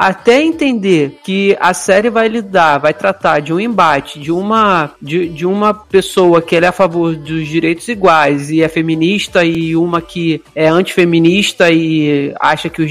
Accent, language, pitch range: Brazilian, Portuguese, 170-220 Hz